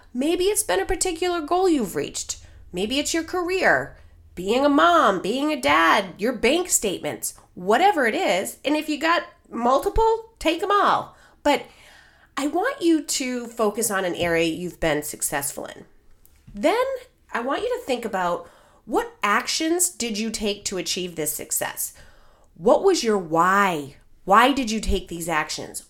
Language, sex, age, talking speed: English, female, 30-49, 165 wpm